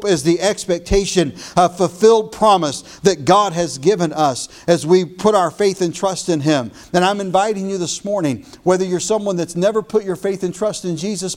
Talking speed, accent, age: 200 wpm, American, 50-69